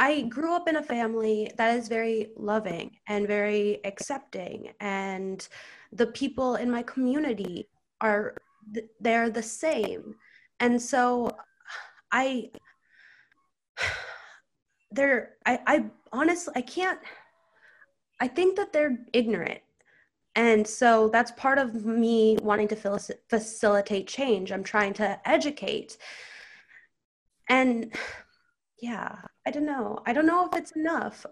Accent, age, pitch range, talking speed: American, 20-39, 210-275 Hz, 120 wpm